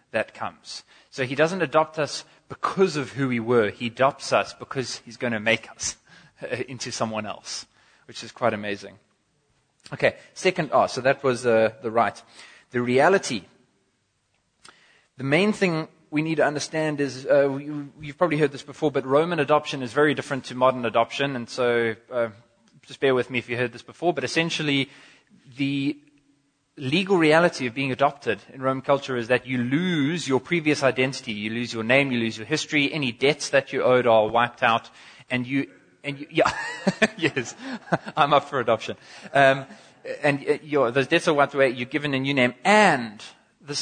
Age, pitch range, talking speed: 20-39, 120-150 Hz, 180 wpm